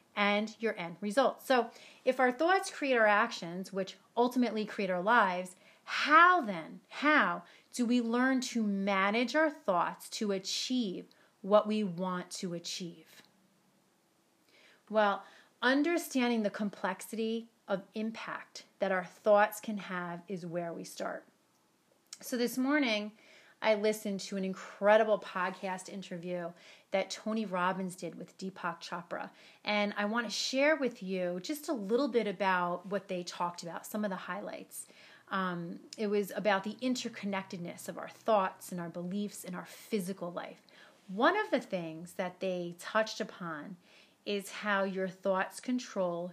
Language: English